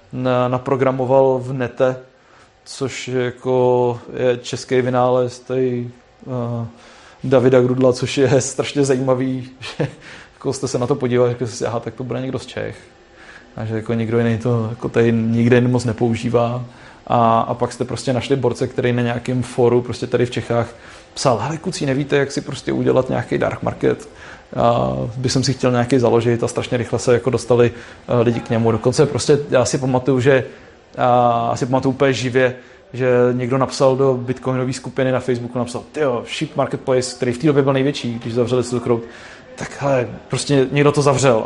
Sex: male